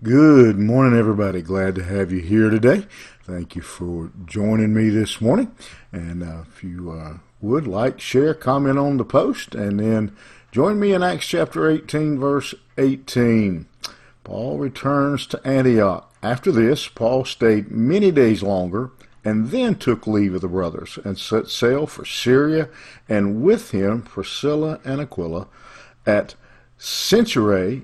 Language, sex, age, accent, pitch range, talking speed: English, male, 50-69, American, 95-130 Hz, 150 wpm